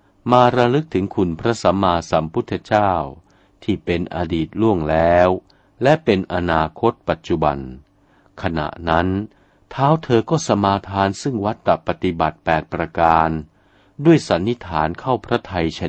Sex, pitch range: male, 85-110 Hz